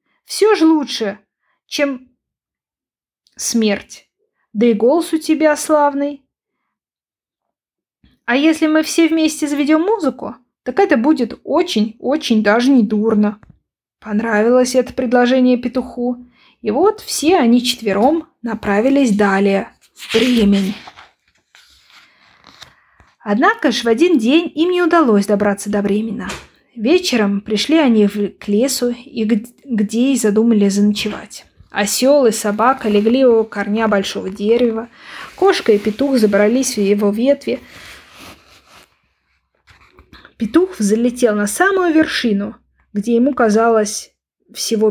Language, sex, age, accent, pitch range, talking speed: Ukrainian, female, 20-39, native, 215-295 Hz, 110 wpm